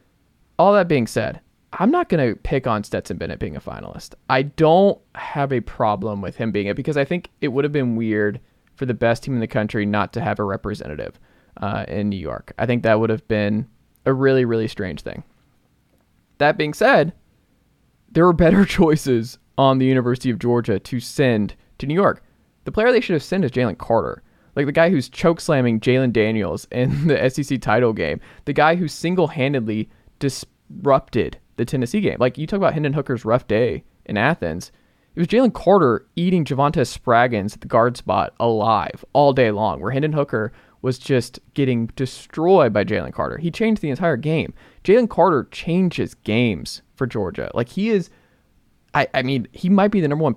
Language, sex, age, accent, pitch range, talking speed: English, male, 20-39, American, 115-155 Hz, 190 wpm